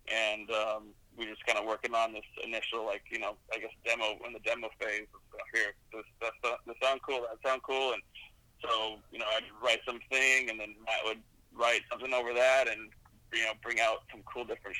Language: English